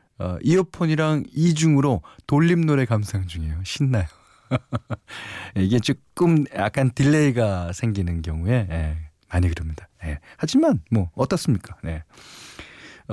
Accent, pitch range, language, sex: native, 95-150 Hz, Korean, male